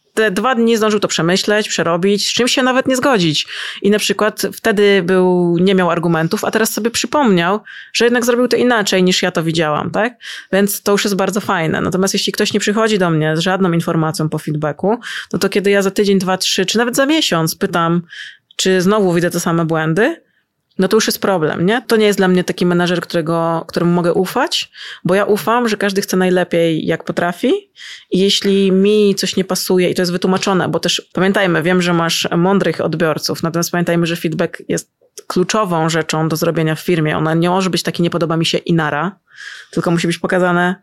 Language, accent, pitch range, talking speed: Polish, native, 170-205 Hz, 205 wpm